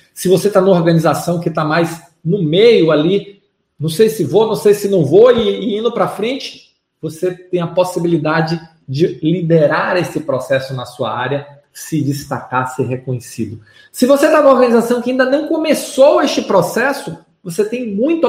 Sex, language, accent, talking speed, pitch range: male, Portuguese, Brazilian, 175 wpm, 165-225 Hz